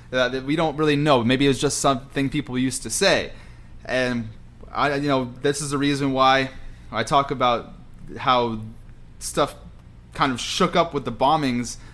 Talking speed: 175 wpm